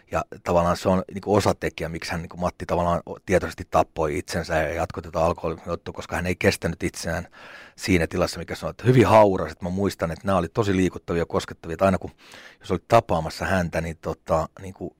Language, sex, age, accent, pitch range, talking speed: Finnish, male, 30-49, native, 85-100 Hz, 200 wpm